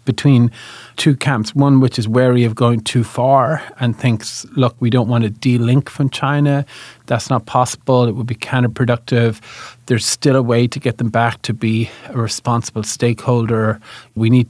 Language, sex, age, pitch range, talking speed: English, male, 30-49, 115-130 Hz, 180 wpm